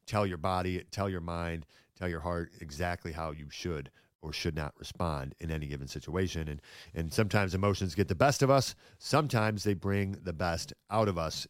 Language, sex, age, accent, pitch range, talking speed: English, male, 40-59, American, 85-110 Hz, 200 wpm